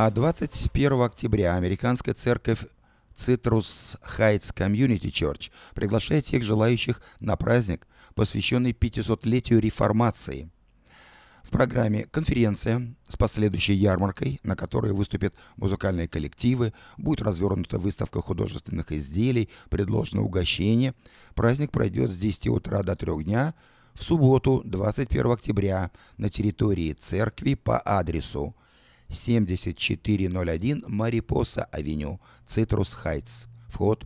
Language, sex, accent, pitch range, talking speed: Russian, male, native, 95-120 Hz, 100 wpm